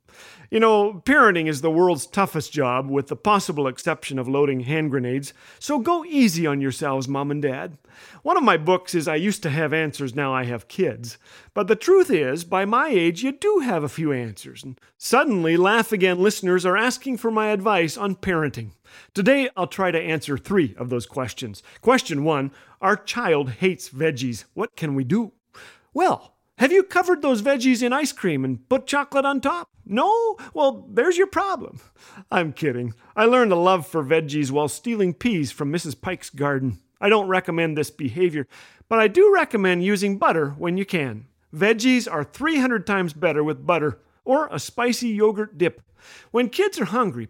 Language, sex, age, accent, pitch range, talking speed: English, male, 40-59, American, 150-230 Hz, 185 wpm